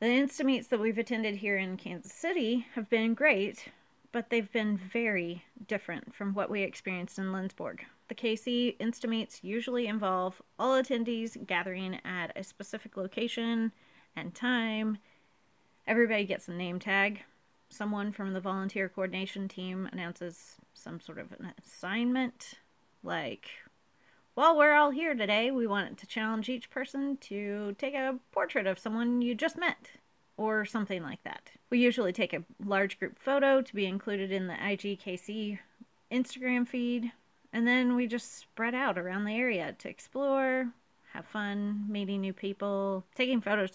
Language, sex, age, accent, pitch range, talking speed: English, female, 30-49, American, 195-250 Hz, 155 wpm